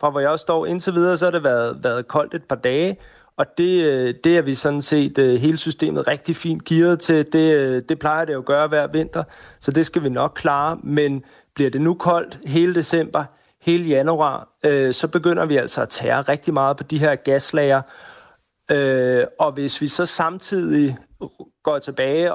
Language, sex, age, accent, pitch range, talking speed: Danish, male, 30-49, native, 135-165 Hz, 200 wpm